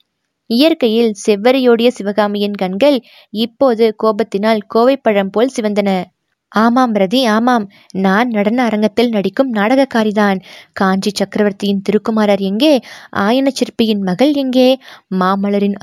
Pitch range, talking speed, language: 195-235 Hz, 95 wpm, Tamil